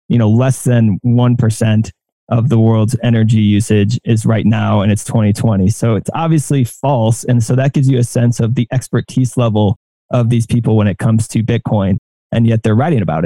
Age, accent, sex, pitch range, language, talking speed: 20-39, American, male, 115-130 Hz, English, 205 wpm